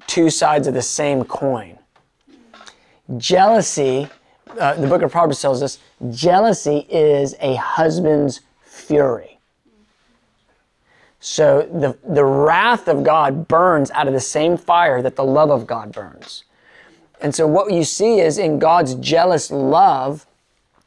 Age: 30-49